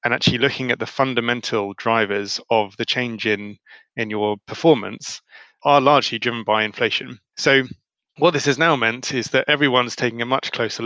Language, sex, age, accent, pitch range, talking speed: English, male, 20-39, British, 110-135 Hz, 175 wpm